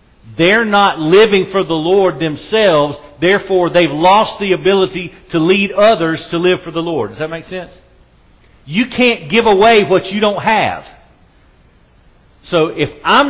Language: English